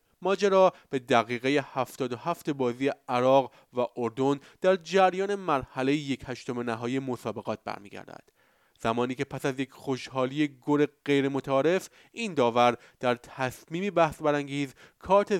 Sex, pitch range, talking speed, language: male, 125-155 Hz, 125 wpm, Persian